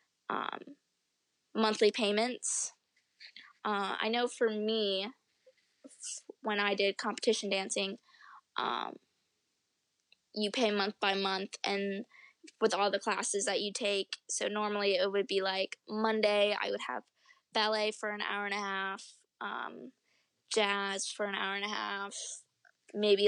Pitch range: 195-220 Hz